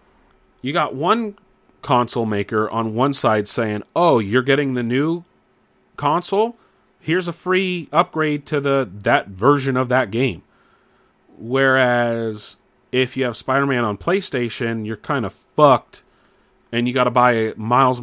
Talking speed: 140 wpm